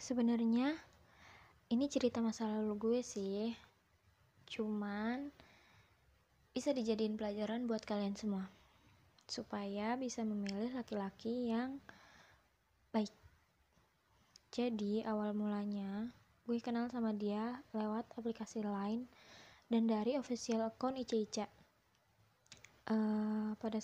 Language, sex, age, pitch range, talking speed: Indonesian, female, 20-39, 210-240 Hz, 95 wpm